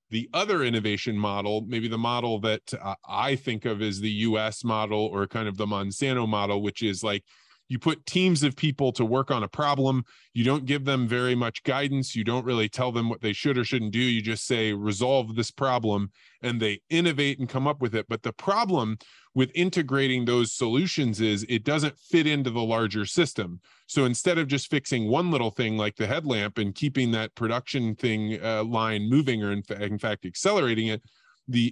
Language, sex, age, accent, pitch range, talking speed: English, male, 20-39, American, 110-135 Hz, 205 wpm